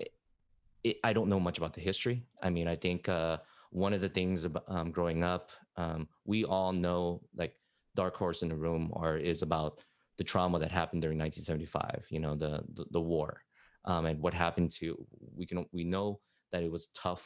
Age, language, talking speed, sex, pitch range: 20-39, English, 200 wpm, male, 85-100 Hz